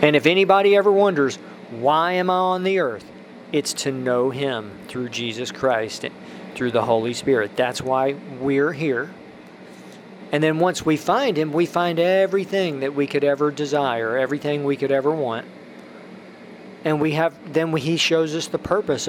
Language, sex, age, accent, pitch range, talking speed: English, male, 40-59, American, 135-170 Hz, 175 wpm